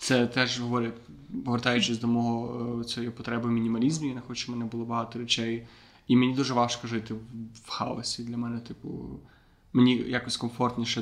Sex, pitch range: male, 120-130 Hz